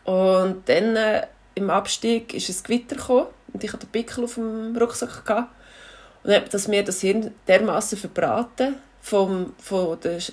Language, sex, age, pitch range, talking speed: German, female, 30-49, 185-230 Hz, 170 wpm